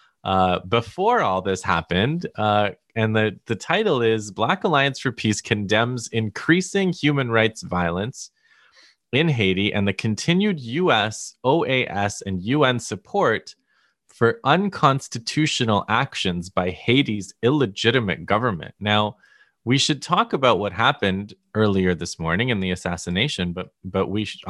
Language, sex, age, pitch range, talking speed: English, male, 20-39, 85-115 Hz, 130 wpm